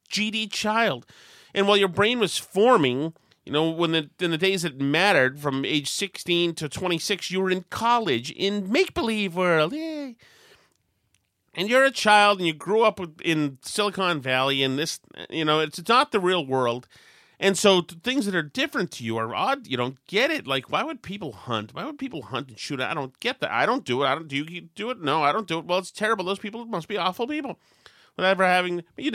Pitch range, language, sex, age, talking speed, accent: 130-190 Hz, English, male, 30-49, 220 wpm, American